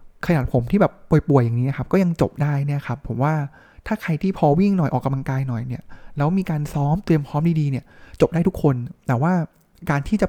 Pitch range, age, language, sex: 130-165 Hz, 20-39, Thai, male